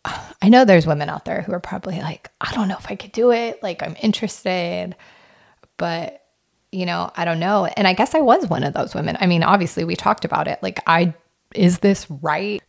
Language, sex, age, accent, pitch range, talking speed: English, female, 30-49, American, 155-190 Hz, 225 wpm